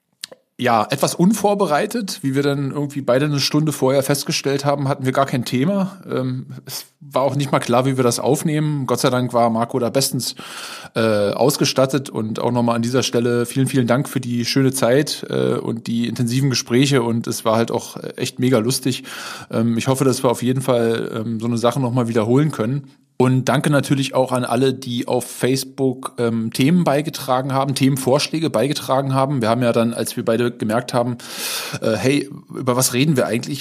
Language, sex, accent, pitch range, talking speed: German, male, German, 120-140 Hz, 190 wpm